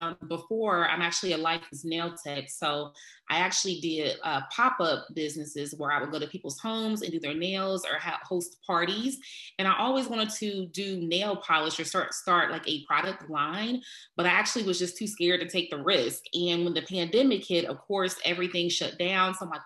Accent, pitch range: American, 160-200 Hz